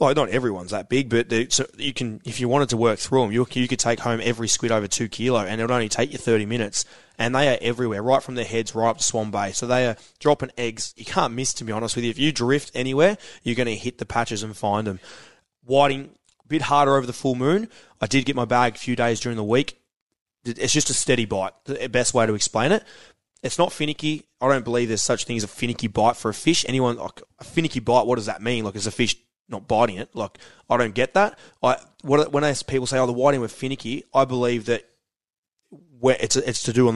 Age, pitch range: 20-39, 115-140 Hz